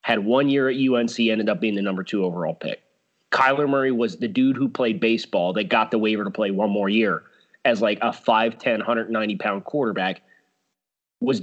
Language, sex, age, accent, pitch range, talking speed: English, male, 30-49, American, 115-145 Hz, 195 wpm